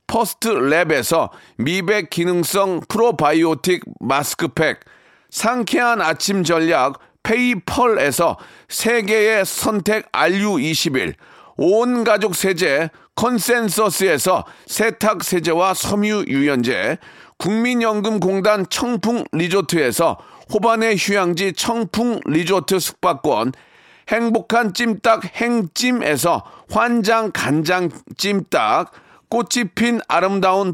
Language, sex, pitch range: Korean, male, 180-225 Hz